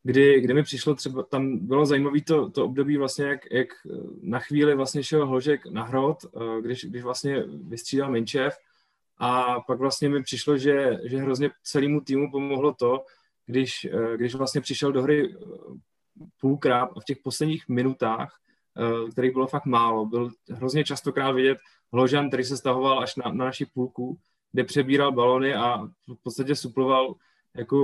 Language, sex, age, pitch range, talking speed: Czech, male, 20-39, 125-140 Hz, 160 wpm